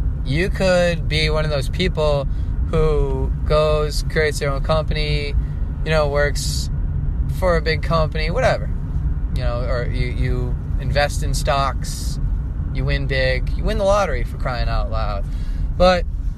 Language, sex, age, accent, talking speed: English, male, 20-39, American, 150 wpm